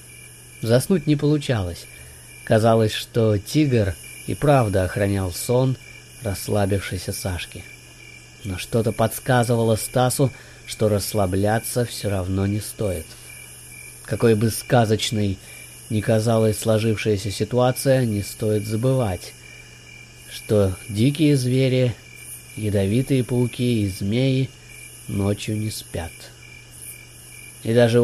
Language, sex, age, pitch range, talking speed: Russian, male, 20-39, 100-125 Hz, 95 wpm